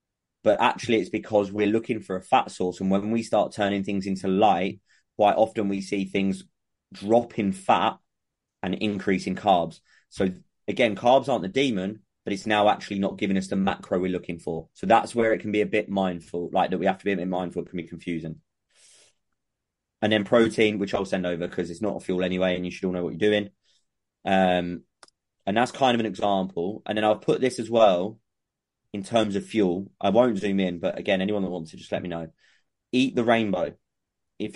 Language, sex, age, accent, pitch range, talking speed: English, male, 20-39, British, 95-110 Hz, 220 wpm